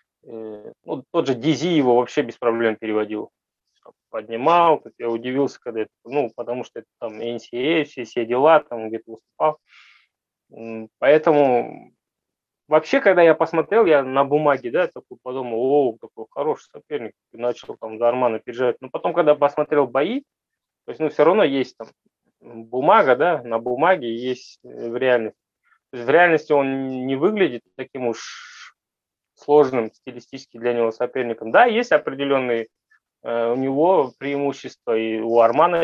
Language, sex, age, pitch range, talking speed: Russian, male, 20-39, 115-150 Hz, 145 wpm